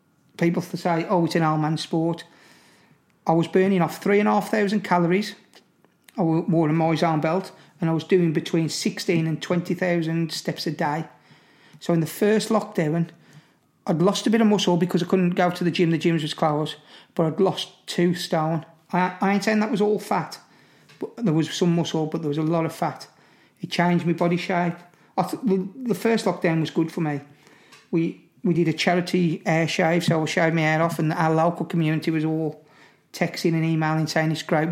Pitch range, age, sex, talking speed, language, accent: 160-185 Hz, 40-59, male, 205 wpm, English, British